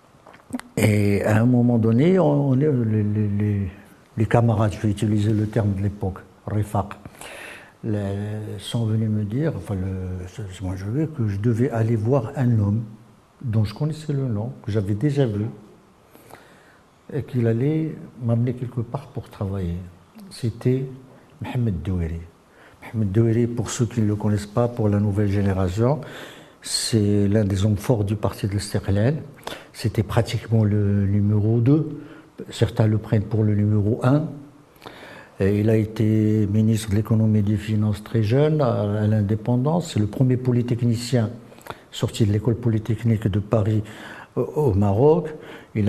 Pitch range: 105-125 Hz